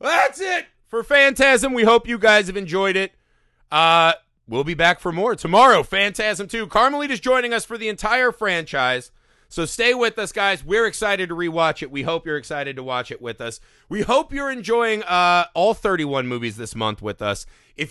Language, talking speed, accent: English, 200 wpm, American